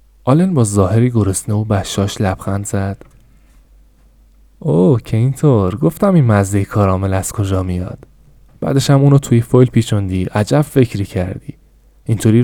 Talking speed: 135 wpm